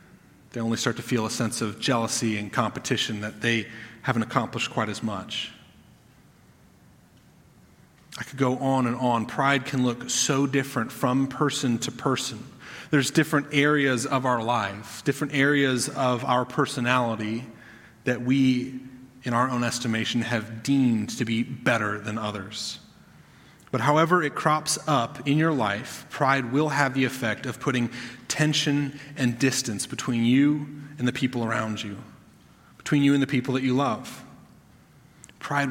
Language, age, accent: English, 30-49, American